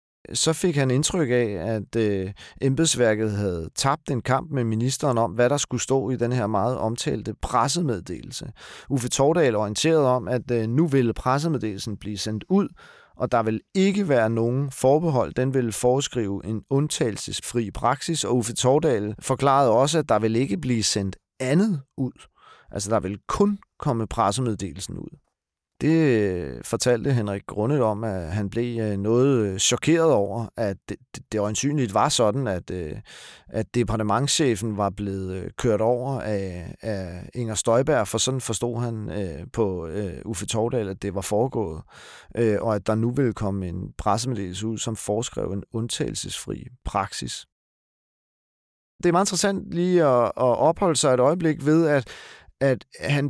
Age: 30-49